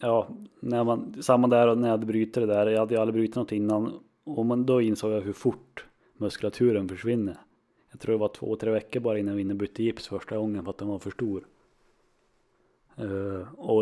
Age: 30-49